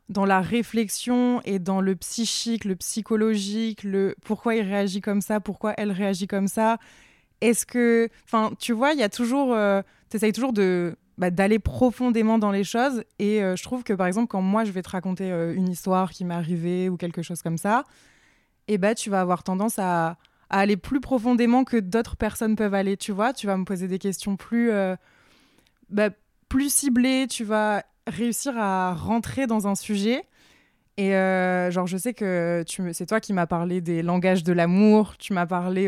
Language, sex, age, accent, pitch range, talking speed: French, female, 20-39, French, 190-230 Hz, 200 wpm